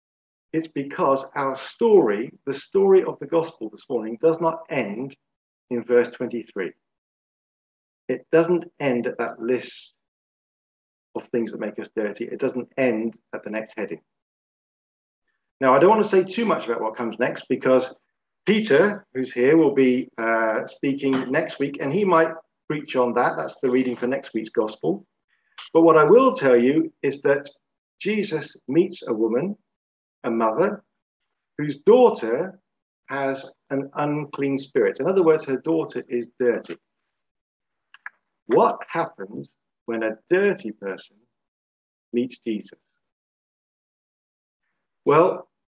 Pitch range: 120-170 Hz